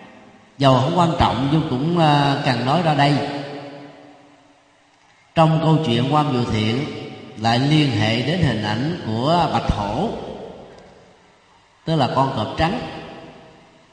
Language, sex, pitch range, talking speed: Vietnamese, male, 115-155 Hz, 130 wpm